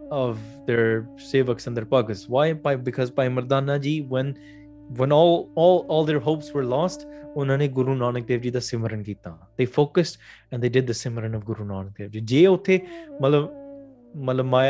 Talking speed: 135 wpm